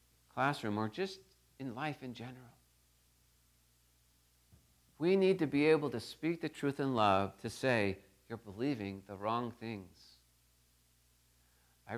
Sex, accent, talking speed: male, American, 130 wpm